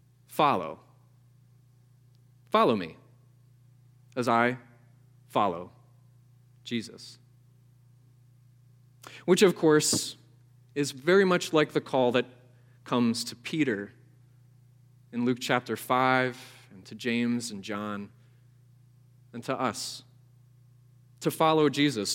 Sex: male